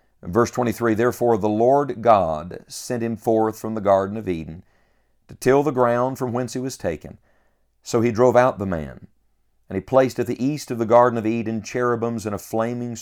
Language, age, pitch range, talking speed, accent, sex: English, 50-69, 95-125 Hz, 205 wpm, American, male